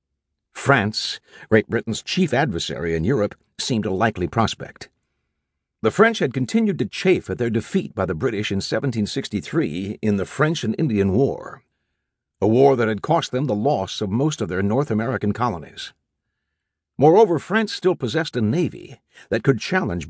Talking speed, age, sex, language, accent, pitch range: 165 wpm, 60-79, male, English, American, 105-140 Hz